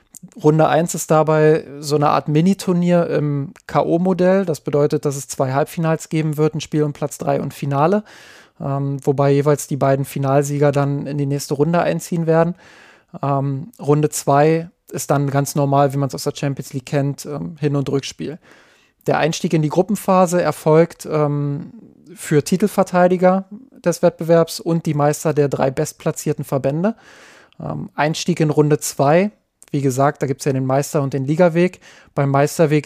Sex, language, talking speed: male, German, 170 wpm